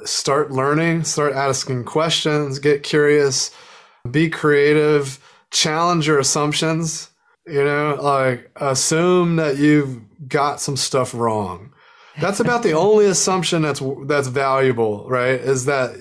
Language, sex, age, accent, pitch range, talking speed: English, male, 30-49, American, 140-165 Hz, 125 wpm